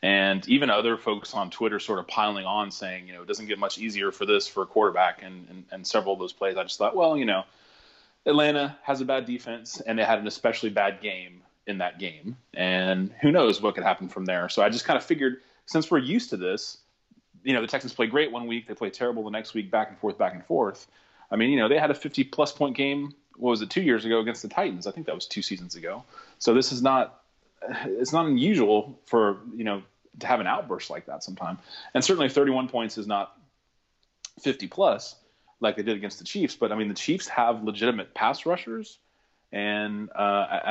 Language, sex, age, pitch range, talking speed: English, male, 30-49, 105-135 Hz, 235 wpm